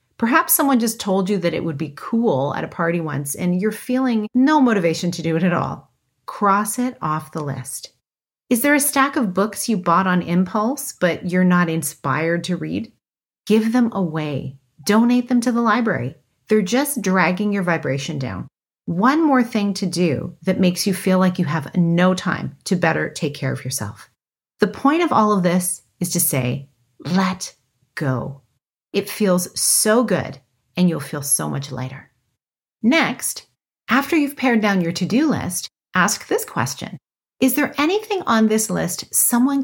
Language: English